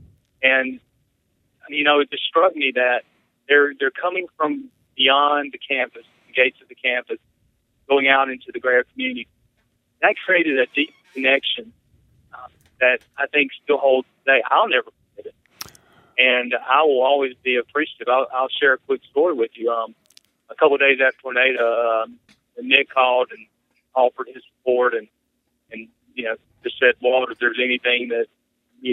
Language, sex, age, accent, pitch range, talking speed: English, male, 40-59, American, 120-145 Hz, 170 wpm